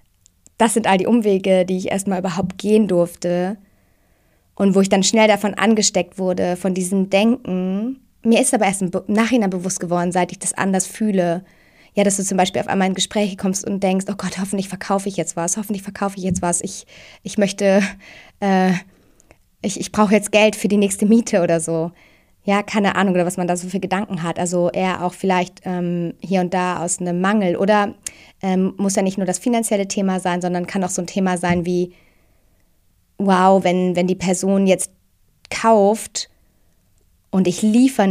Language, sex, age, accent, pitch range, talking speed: German, female, 20-39, German, 180-205 Hz, 195 wpm